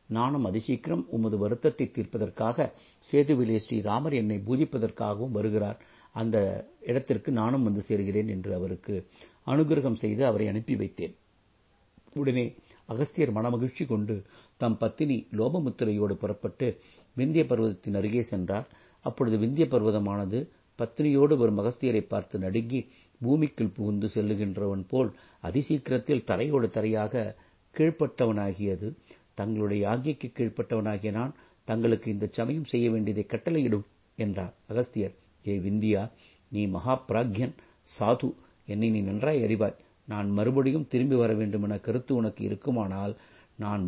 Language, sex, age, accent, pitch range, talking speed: Tamil, male, 50-69, native, 105-125 Hz, 110 wpm